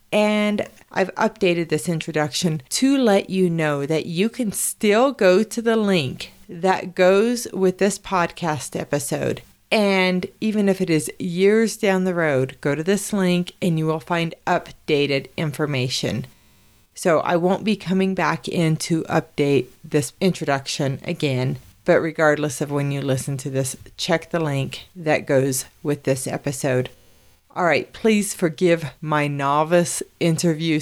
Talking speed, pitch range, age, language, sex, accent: 150 wpm, 145-185 Hz, 40-59, English, female, American